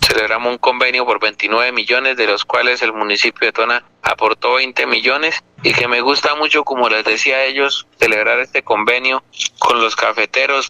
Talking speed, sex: 180 wpm, male